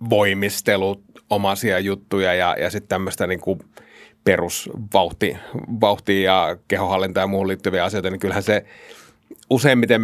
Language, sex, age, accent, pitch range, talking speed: Finnish, male, 30-49, native, 95-110 Hz, 115 wpm